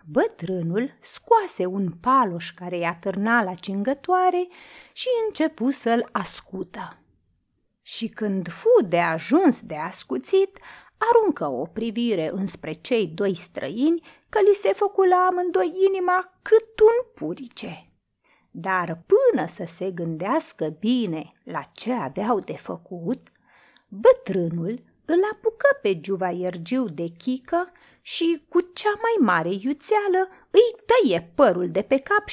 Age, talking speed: 30-49, 125 wpm